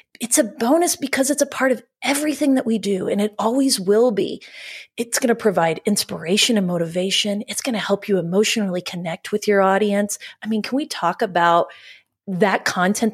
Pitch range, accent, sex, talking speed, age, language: 195-255 Hz, American, female, 190 wpm, 30-49, English